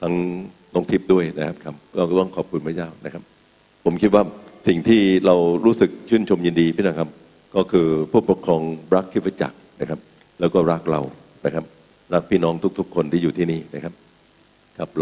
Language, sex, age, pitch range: Thai, male, 60-79, 80-95 Hz